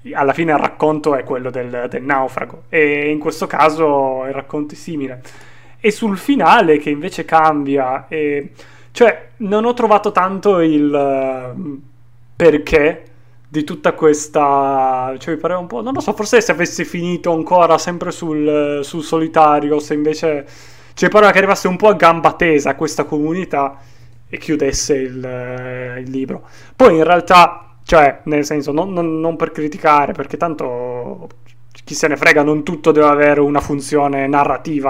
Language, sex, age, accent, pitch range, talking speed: Italian, male, 20-39, native, 135-160 Hz, 165 wpm